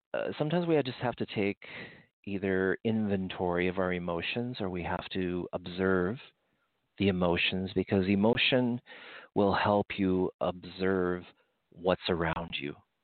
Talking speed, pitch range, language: 130 wpm, 85-100 Hz, English